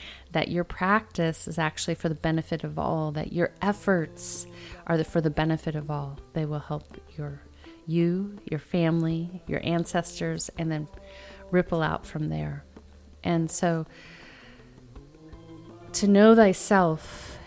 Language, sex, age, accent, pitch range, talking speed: English, female, 30-49, American, 110-170 Hz, 135 wpm